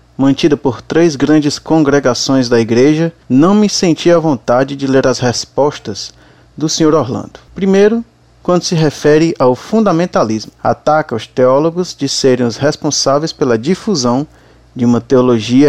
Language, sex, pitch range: Portuguese, male, 120-155 Hz